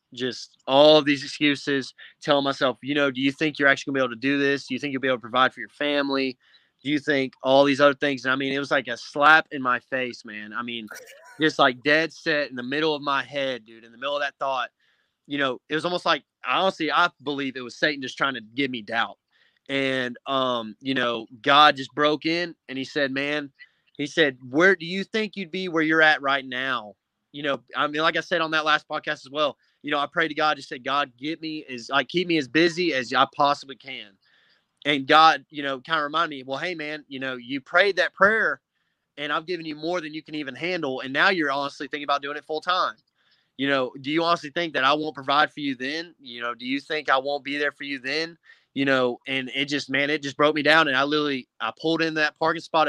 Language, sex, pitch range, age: English, male, 135-155 Hz, 20-39